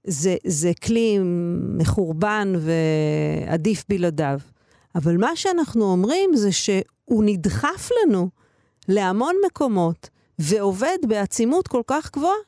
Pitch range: 180-285 Hz